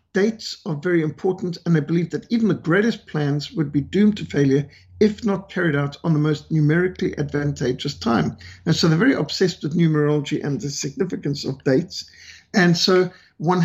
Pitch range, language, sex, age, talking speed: 150-185 Hz, English, male, 50-69, 185 wpm